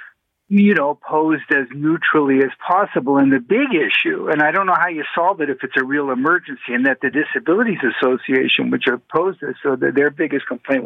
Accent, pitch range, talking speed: American, 135-165 Hz, 205 wpm